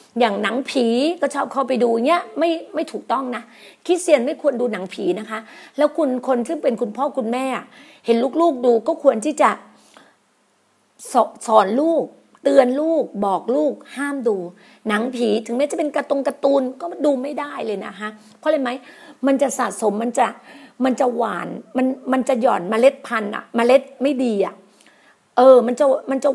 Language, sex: Thai, female